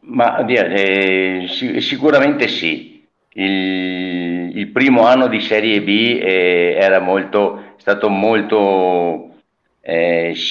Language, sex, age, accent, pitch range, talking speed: Italian, male, 50-69, native, 80-95 Hz, 90 wpm